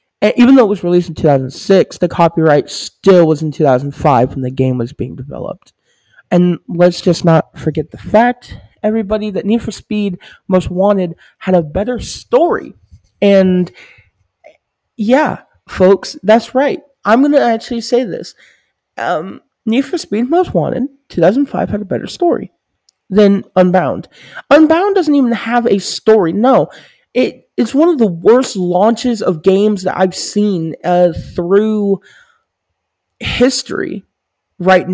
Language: English